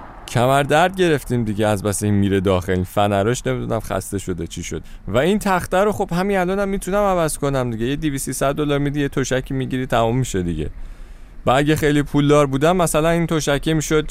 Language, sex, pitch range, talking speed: Persian, male, 100-150 Hz, 195 wpm